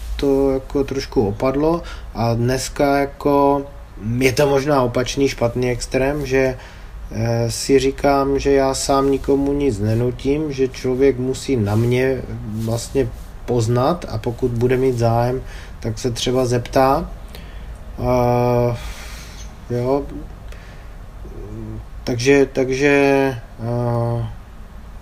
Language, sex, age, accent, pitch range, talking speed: Czech, male, 20-39, native, 110-130 Hz, 105 wpm